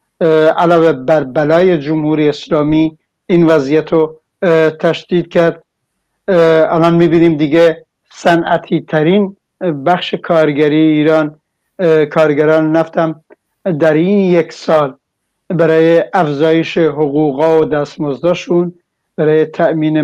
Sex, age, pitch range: male, 60-79, 150-165 Hz